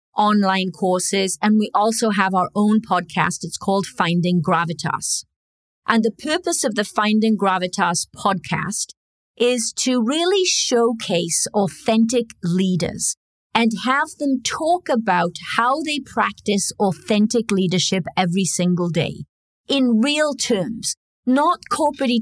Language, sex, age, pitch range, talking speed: English, female, 40-59, 180-235 Hz, 120 wpm